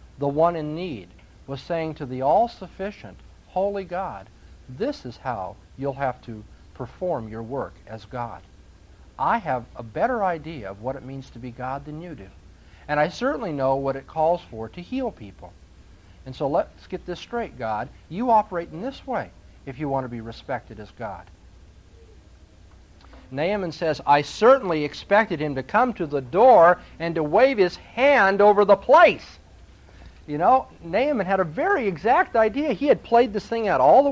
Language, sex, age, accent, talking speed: English, male, 50-69, American, 180 wpm